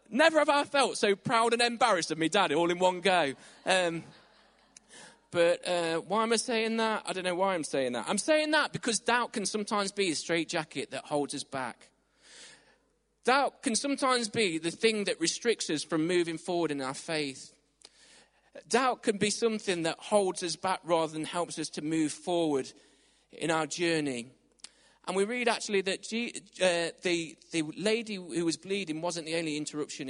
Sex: male